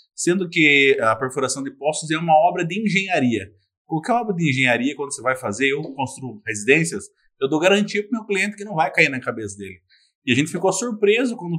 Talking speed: 215 wpm